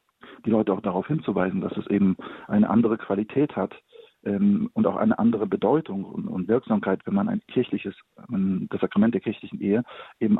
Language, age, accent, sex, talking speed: German, 40-59, German, male, 180 wpm